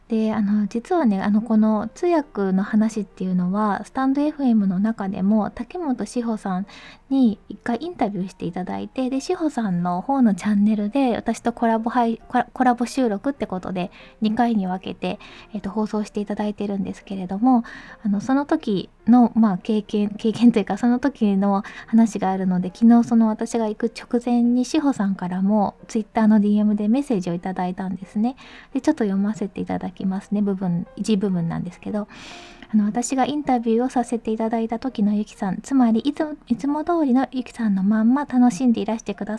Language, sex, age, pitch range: Japanese, female, 20-39, 200-240 Hz